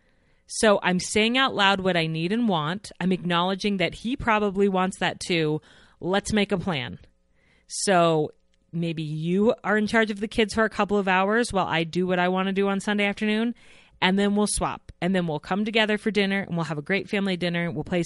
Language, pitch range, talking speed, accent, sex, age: English, 165-210 Hz, 225 wpm, American, female, 30-49